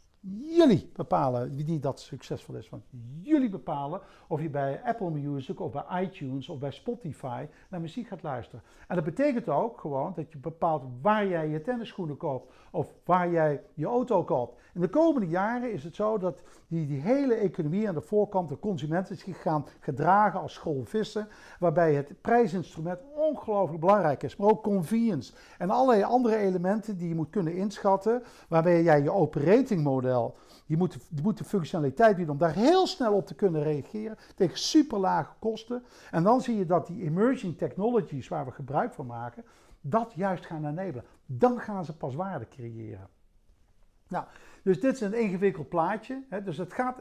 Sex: male